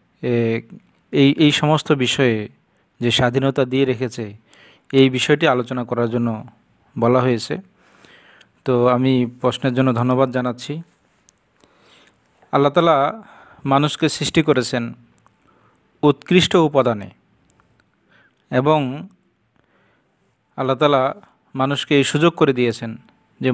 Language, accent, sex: Bengali, native, male